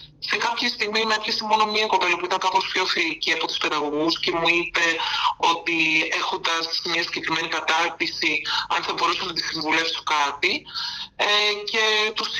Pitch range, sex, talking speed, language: 165-215 Hz, male, 165 wpm, Greek